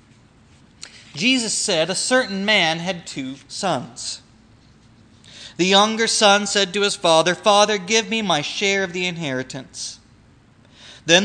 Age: 30-49